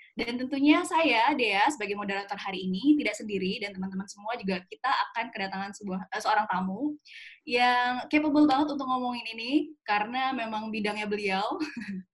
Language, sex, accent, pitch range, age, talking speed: Indonesian, female, native, 205-275 Hz, 10-29, 150 wpm